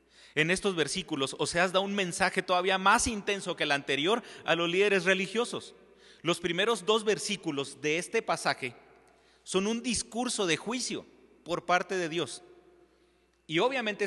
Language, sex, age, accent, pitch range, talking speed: Spanish, male, 40-59, Mexican, 180-245 Hz, 155 wpm